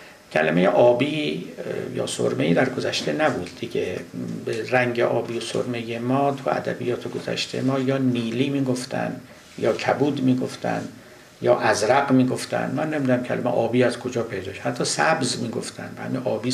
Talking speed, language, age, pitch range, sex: 145 wpm, Persian, 60-79, 120-135 Hz, male